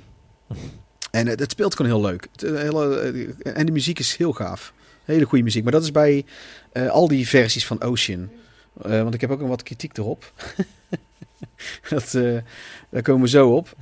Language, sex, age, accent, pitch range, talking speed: Dutch, male, 40-59, Dutch, 105-130 Hz, 180 wpm